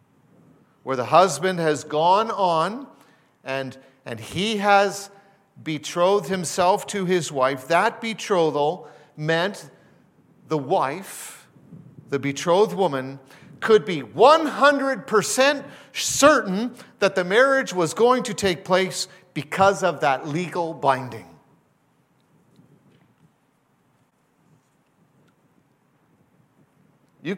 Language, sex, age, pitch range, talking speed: English, male, 50-69, 140-185 Hz, 90 wpm